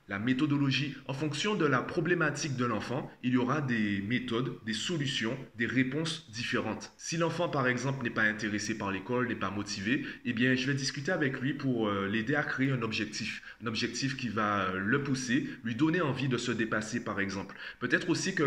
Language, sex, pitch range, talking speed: French, male, 110-145 Hz, 200 wpm